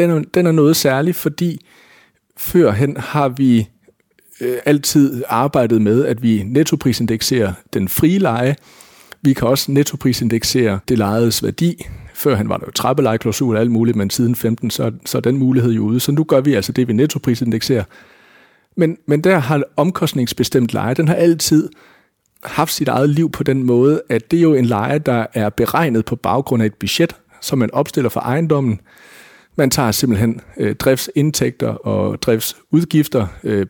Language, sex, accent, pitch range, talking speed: Danish, male, native, 110-145 Hz, 165 wpm